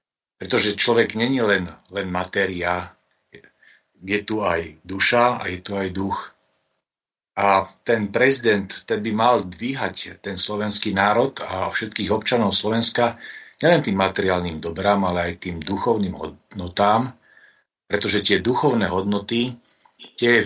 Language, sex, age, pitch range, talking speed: Slovak, male, 40-59, 95-110 Hz, 125 wpm